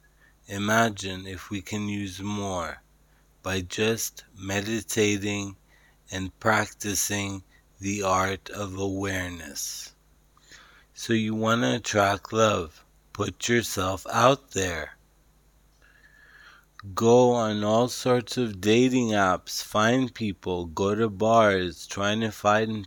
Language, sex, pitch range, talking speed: English, male, 95-115 Hz, 105 wpm